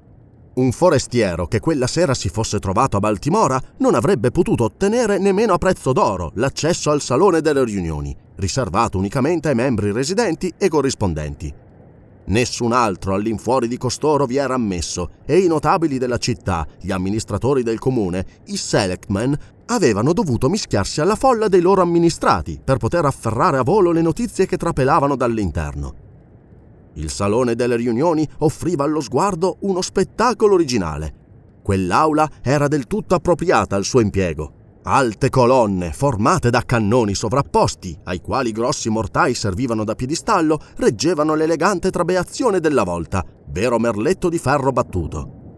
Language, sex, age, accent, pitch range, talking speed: Italian, male, 30-49, native, 105-165 Hz, 140 wpm